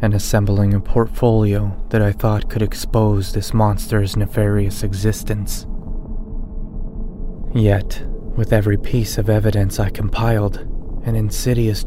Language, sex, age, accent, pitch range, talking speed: English, male, 20-39, American, 100-110 Hz, 115 wpm